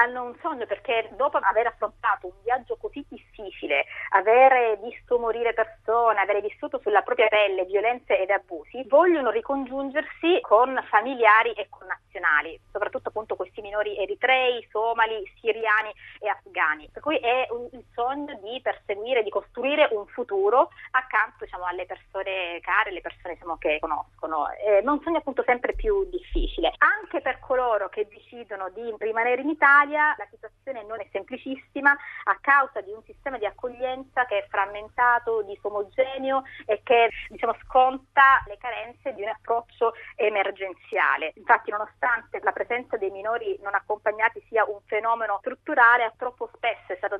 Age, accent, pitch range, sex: 30-49, native, 210-260 Hz, female